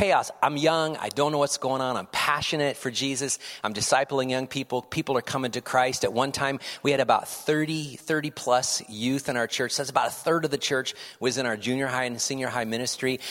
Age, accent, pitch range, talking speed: 30-49, American, 125-150 Hz, 230 wpm